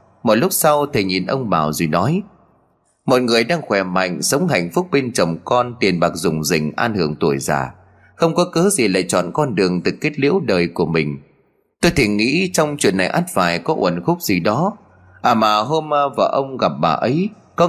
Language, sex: Vietnamese, male